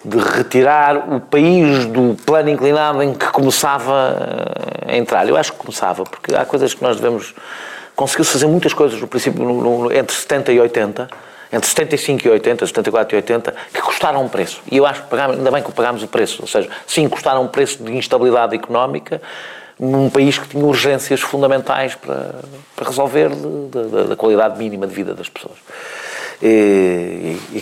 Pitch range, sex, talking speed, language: 120-140 Hz, male, 180 wpm, Portuguese